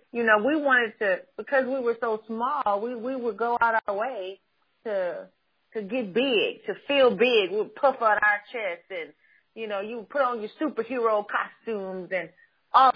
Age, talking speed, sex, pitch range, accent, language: 30-49, 190 wpm, female, 195-245 Hz, American, English